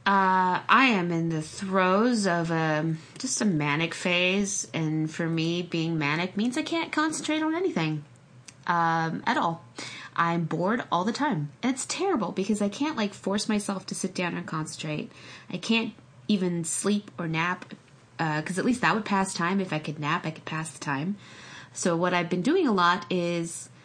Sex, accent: female, American